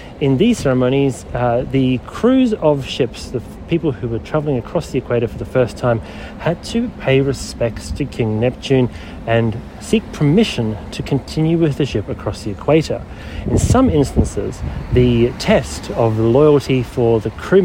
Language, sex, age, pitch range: English, male, 30-49, 110-140 Hz